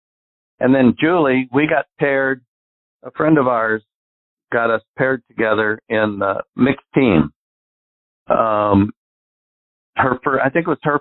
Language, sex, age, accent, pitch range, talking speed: English, male, 60-79, American, 100-130 Hz, 135 wpm